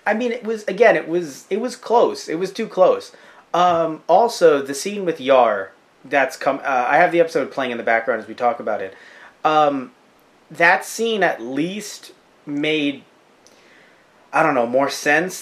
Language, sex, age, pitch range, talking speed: English, male, 30-49, 140-195 Hz, 170 wpm